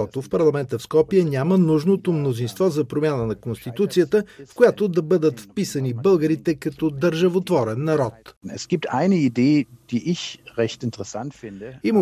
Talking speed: 105 wpm